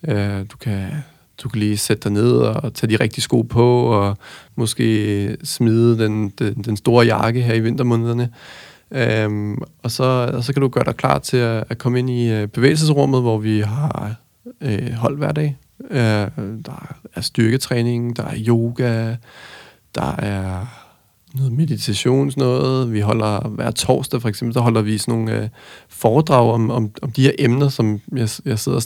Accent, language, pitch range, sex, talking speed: native, Danish, 110-135 Hz, male, 175 wpm